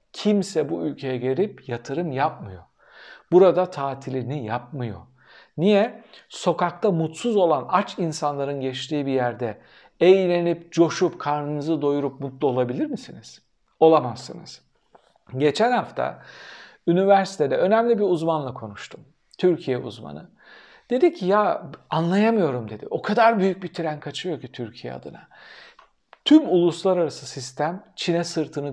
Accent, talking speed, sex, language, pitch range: native, 115 wpm, male, Turkish, 130-195 Hz